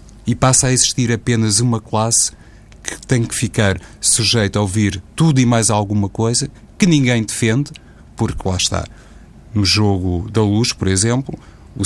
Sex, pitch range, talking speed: male, 100-115 Hz, 160 wpm